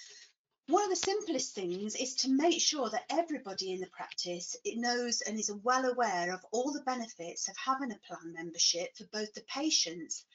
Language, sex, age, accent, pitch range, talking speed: English, female, 40-59, British, 200-265 Hz, 190 wpm